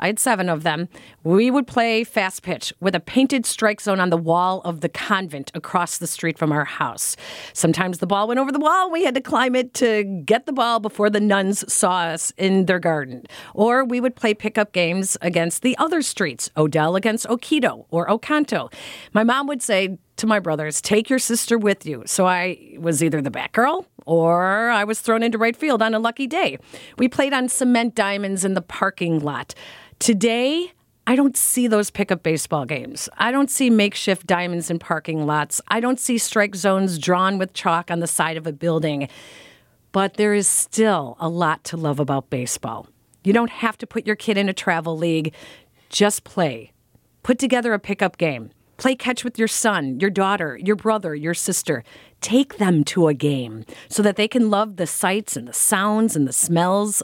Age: 40-59